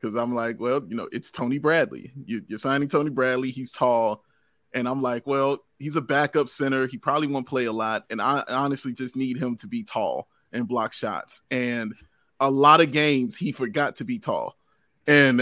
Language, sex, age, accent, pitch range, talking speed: English, male, 30-49, American, 130-155 Hz, 200 wpm